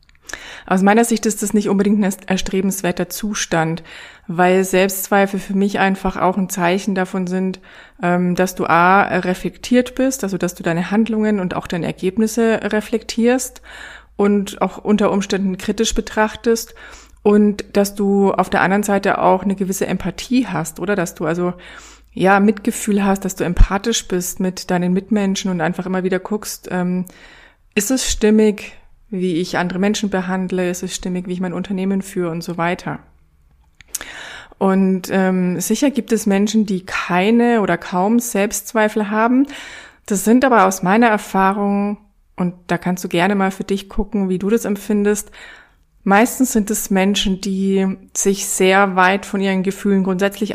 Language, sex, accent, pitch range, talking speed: German, female, German, 185-210 Hz, 160 wpm